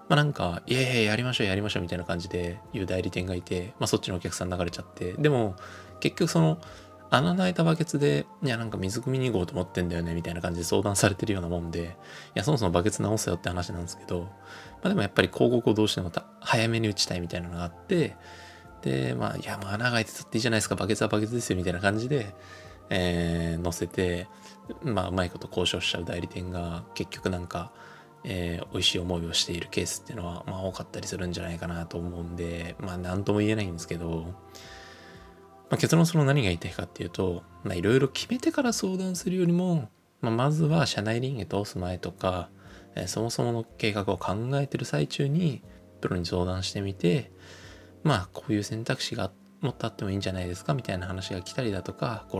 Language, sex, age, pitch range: Japanese, male, 20-39, 90-115 Hz